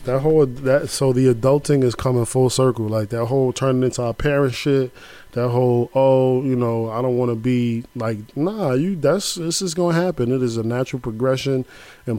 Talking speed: 205 wpm